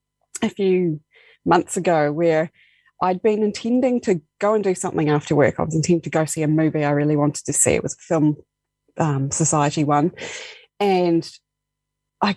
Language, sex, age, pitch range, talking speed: English, female, 20-39, 150-180 Hz, 180 wpm